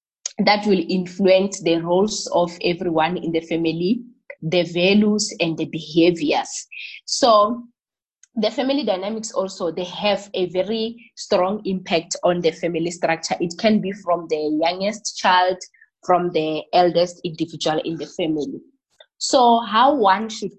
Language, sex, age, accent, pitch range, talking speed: English, female, 20-39, South African, 170-205 Hz, 140 wpm